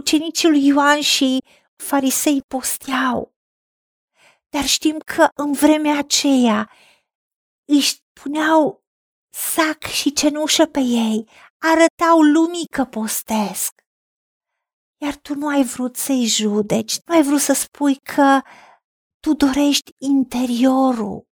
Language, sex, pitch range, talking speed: Romanian, female, 245-295 Hz, 110 wpm